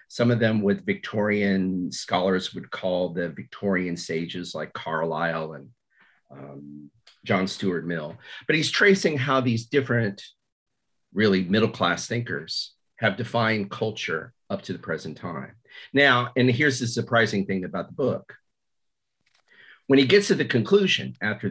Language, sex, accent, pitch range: English, male, American, 95-135 Hz